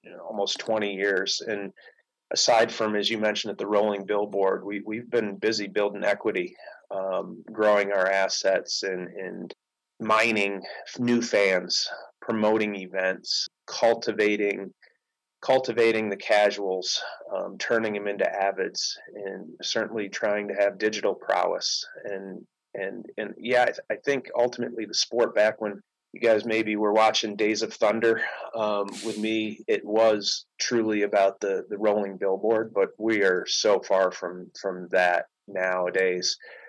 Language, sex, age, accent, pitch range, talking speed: English, male, 30-49, American, 100-115 Hz, 145 wpm